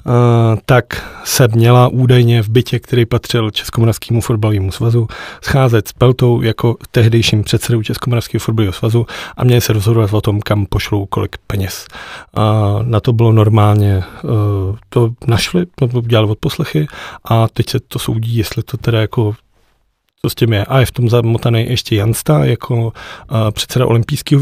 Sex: male